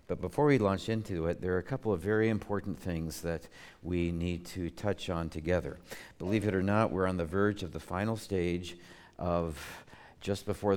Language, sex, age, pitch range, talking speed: English, male, 60-79, 85-110 Hz, 200 wpm